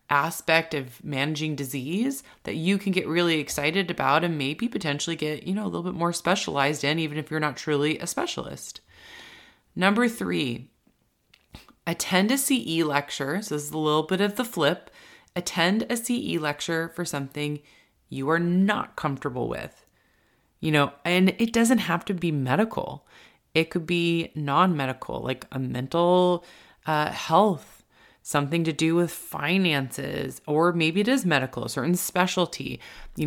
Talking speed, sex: 160 wpm, female